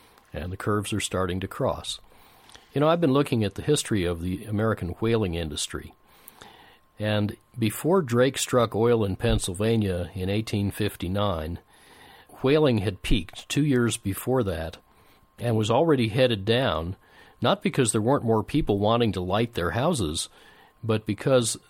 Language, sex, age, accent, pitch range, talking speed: English, male, 50-69, American, 95-120 Hz, 150 wpm